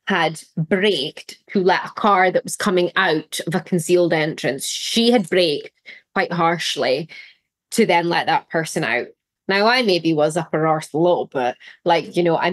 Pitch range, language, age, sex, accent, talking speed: 165-225 Hz, English, 20-39, female, British, 180 wpm